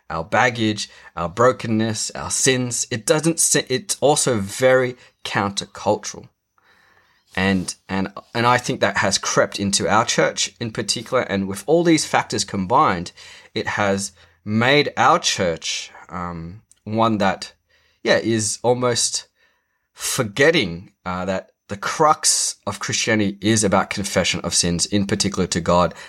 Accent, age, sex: Australian, 20-39, male